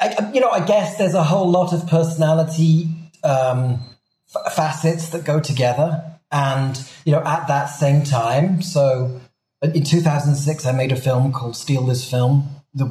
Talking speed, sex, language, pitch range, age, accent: 165 wpm, male, English, 125-155 Hz, 30-49, British